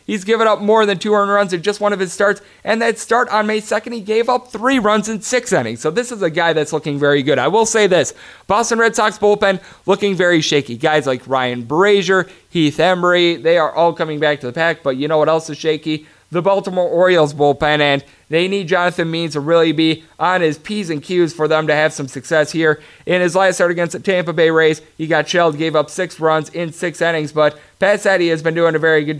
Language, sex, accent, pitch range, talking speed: English, male, American, 155-195 Hz, 250 wpm